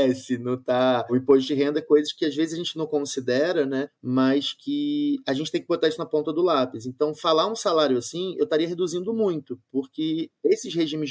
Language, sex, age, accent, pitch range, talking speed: Portuguese, male, 20-39, Brazilian, 130-150 Hz, 205 wpm